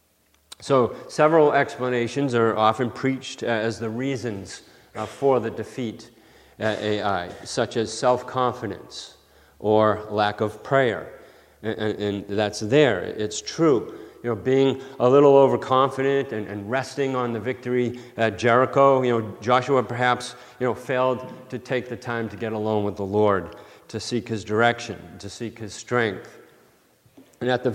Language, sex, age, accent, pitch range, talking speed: English, male, 40-59, American, 110-130 Hz, 145 wpm